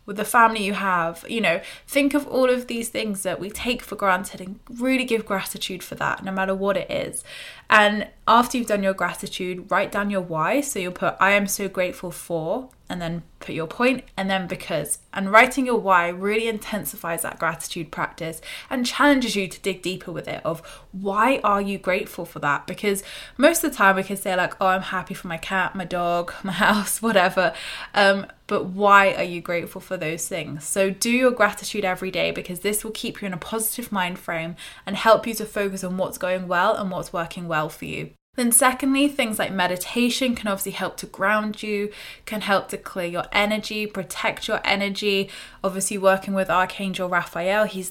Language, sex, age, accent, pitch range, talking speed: English, female, 20-39, British, 185-220 Hz, 205 wpm